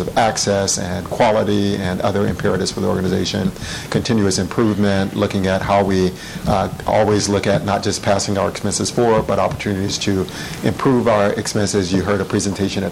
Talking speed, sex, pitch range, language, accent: 170 wpm, male, 95-110 Hz, English, American